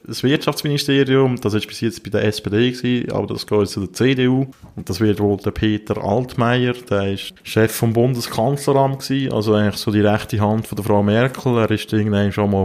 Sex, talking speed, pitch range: male, 215 wpm, 105-125 Hz